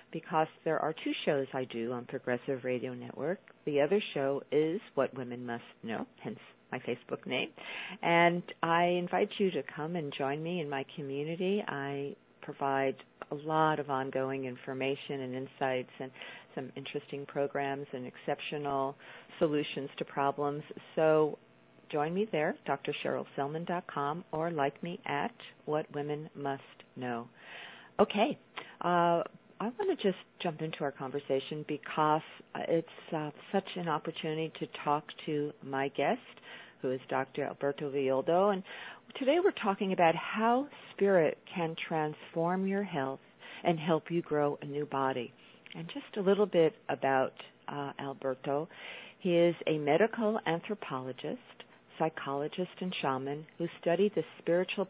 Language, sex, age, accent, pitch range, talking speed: English, female, 50-69, American, 140-170 Hz, 140 wpm